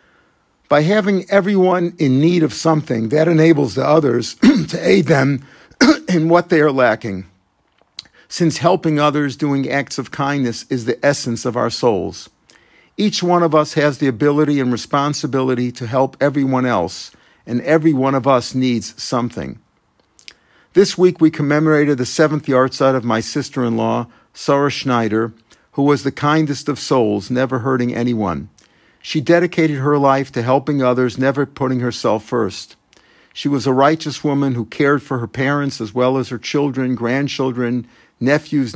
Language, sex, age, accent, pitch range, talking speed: English, male, 50-69, American, 120-150 Hz, 155 wpm